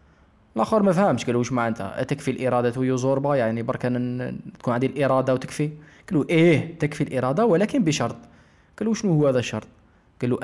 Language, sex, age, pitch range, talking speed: Arabic, male, 20-39, 110-145 Hz, 160 wpm